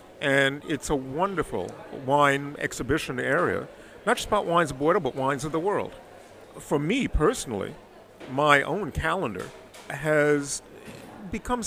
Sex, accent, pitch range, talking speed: male, American, 125-160 Hz, 135 wpm